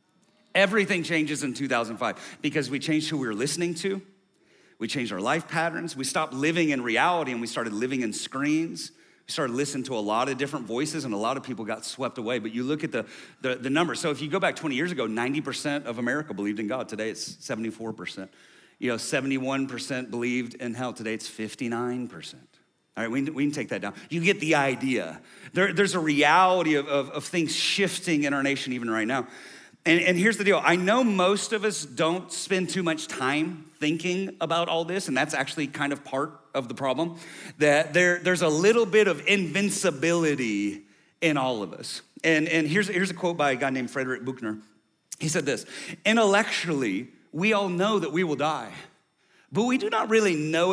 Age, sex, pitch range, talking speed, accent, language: 40-59, male, 130-180 Hz, 205 wpm, American, English